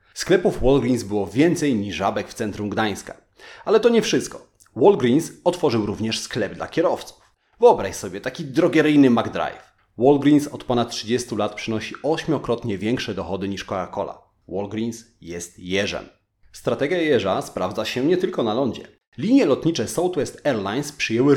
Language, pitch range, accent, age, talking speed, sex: Polish, 105-150 Hz, native, 30-49, 145 wpm, male